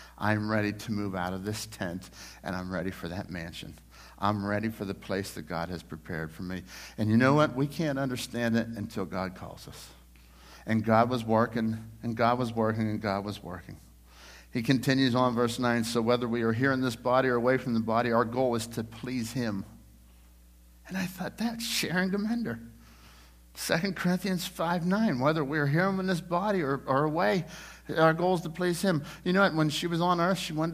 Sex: male